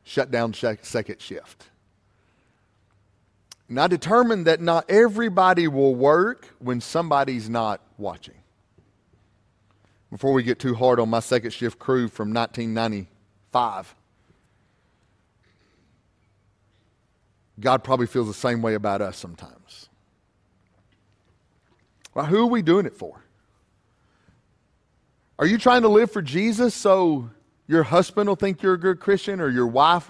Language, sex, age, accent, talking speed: English, male, 40-59, American, 125 wpm